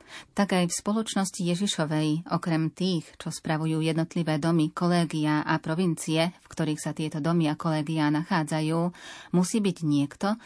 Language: Slovak